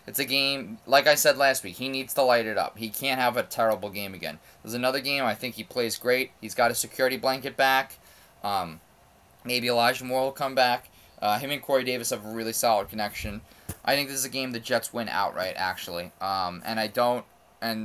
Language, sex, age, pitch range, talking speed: English, male, 20-39, 105-130 Hz, 230 wpm